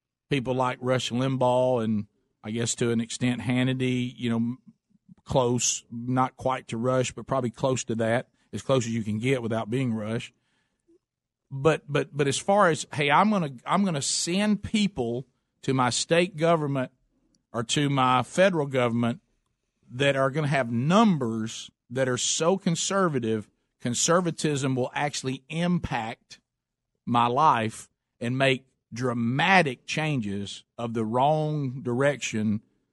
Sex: male